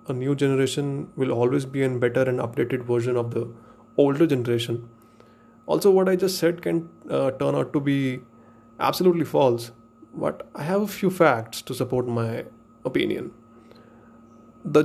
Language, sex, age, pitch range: English, male, 30-49, 115-160 Hz